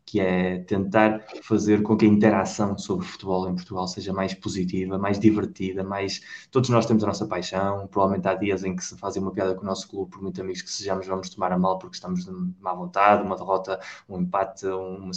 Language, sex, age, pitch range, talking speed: Portuguese, male, 20-39, 95-105 Hz, 225 wpm